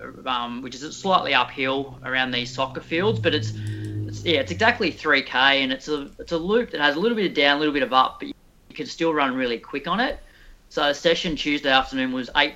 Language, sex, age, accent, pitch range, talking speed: English, female, 30-49, Australian, 130-165 Hz, 245 wpm